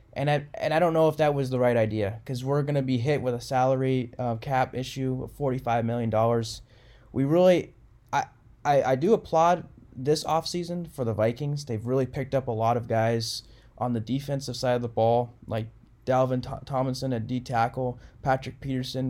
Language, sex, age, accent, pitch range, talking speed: English, male, 20-39, American, 115-135 Hz, 190 wpm